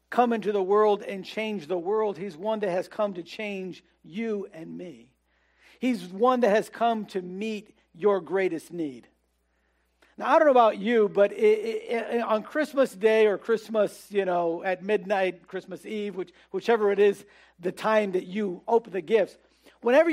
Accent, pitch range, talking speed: American, 190-235 Hz, 170 wpm